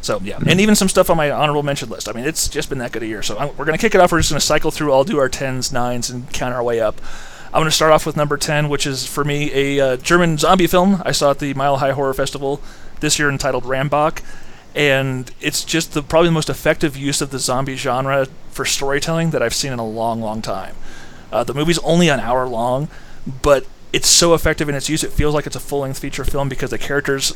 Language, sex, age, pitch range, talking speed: English, male, 30-49, 130-155 Hz, 265 wpm